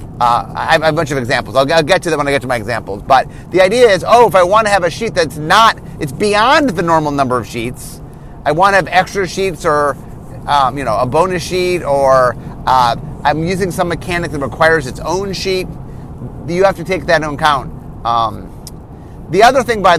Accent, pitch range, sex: American, 135-180 Hz, male